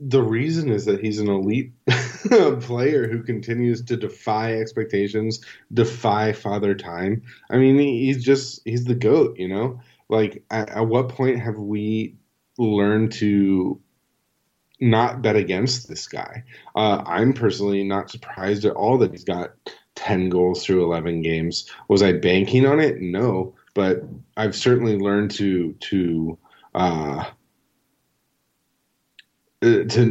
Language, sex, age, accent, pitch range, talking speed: English, male, 30-49, American, 95-115 Hz, 140 wpm